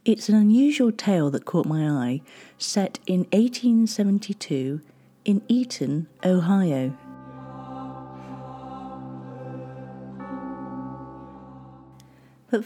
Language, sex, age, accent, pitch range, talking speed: English, female, 40-59, British, 135-220 Hz, 70 wpm